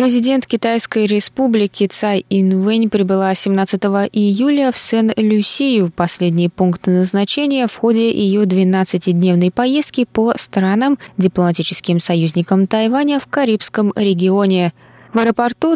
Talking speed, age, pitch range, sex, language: 110 wpm, 20-39, 180-230 Hz, female, Russian